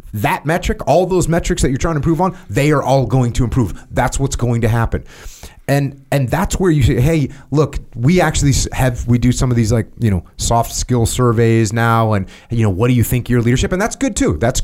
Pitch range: 115-145 Hz